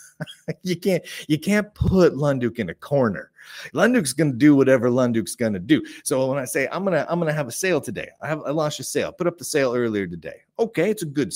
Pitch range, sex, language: 135-195 Hz, male, English